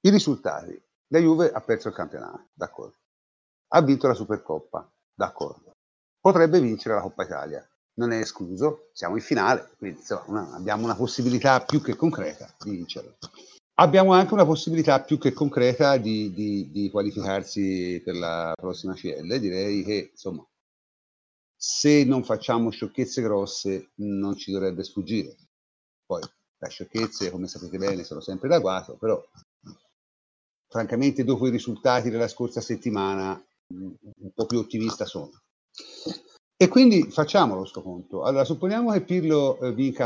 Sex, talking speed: male, 145 wpm